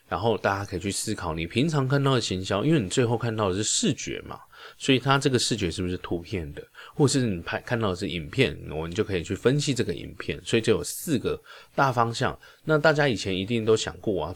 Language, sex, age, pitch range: Chinese, male, 20-39, 90-125 Hz